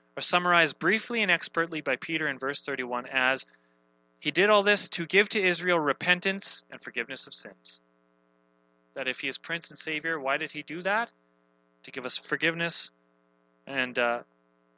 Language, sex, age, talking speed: English, male, 30-49, 170 wpm